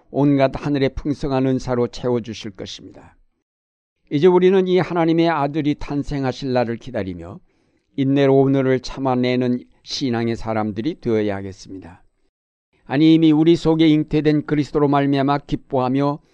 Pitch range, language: 120-145 Hz, Korean